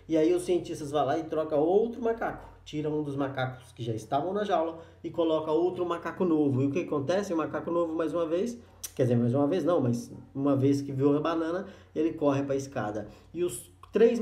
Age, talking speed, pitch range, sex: 20-39, 230 wpm, 140-185 Hz, male